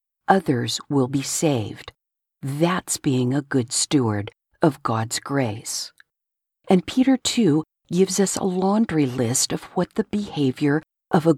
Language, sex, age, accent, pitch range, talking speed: English, female, 50-69, American, 130-175 Hz, 135 wpm